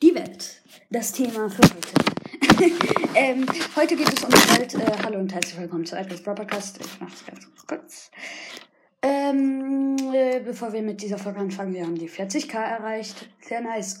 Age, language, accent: 20-39, German, German